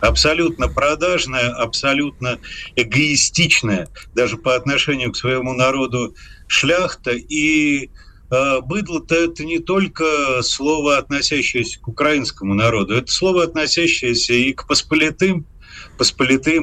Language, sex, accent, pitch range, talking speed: Russian, male, native, 125-165 Hz, 105 wpm